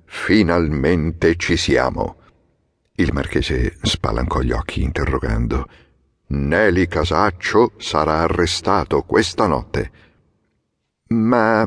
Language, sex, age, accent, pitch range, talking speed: Italian, male, 50-69, native, 80-110 Hz, 80 wpm